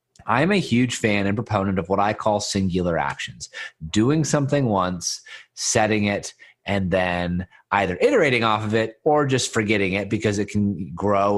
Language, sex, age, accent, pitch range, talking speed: English, male, 30-49, American, 100-130 Hz, 170 wpm